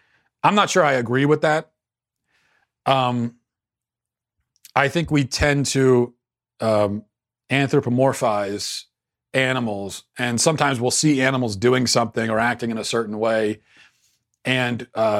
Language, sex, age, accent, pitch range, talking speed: English, male, 40-59, American, 115-145 Hz, 120 wpm